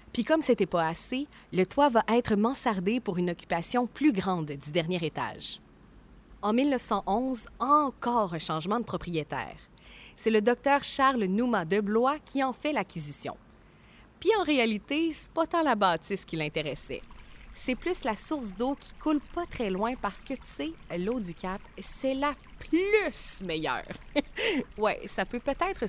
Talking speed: 165 wpm